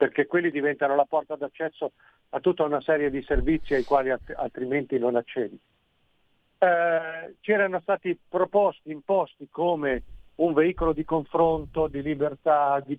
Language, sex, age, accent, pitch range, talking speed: Italian, male, 50-69, native, 140-160 Hz, 145 wpm